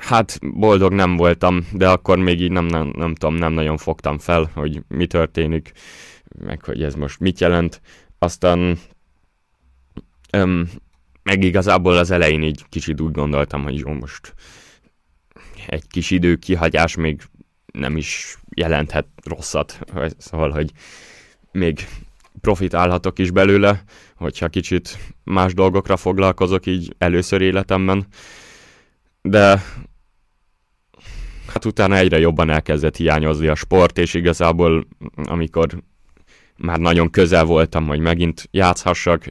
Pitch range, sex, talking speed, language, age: 80-95 Hz, male, 120 wpm, Hungarian, 10-29